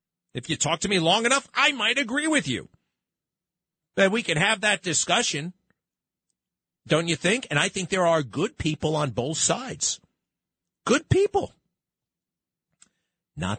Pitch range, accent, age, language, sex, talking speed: 110-165 Hz, American, 50-69, English, male, 150 wpm